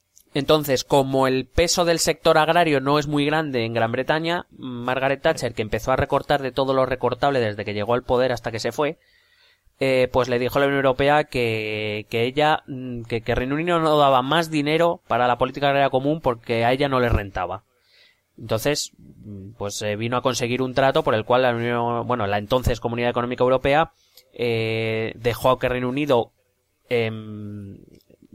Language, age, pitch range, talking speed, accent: Spanish, 20-39, 115-140 Hz, 190 wpm, Spanish